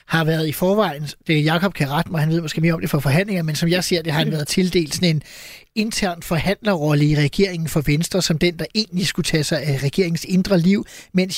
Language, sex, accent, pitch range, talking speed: Danish, male, native, 150-180 Hz, 250 wpm